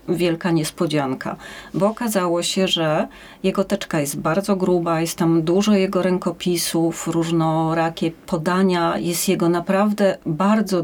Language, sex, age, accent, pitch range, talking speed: Polish, female, 30-49, native, 170-195 Hz, 120 wpm